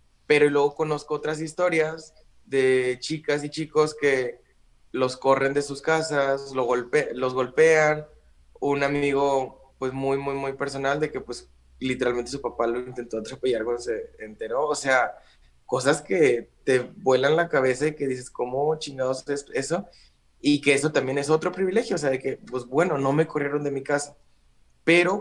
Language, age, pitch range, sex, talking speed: Spanish, 20-39, 130-150 Hz, male, 175 wpm